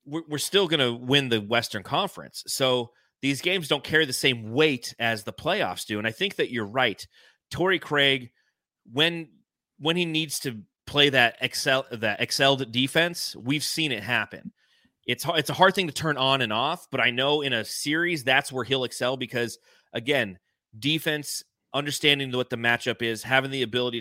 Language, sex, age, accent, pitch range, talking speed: English, male, 30-49, American, 115-145 Hz, 185 wpm